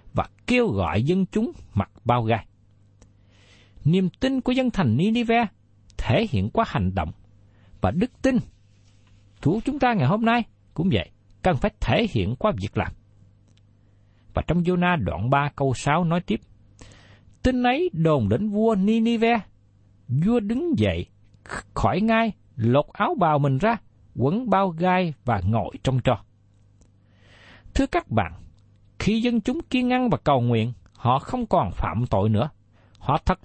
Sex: male